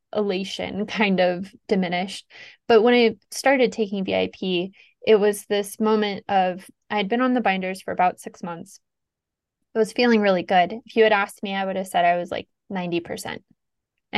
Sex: female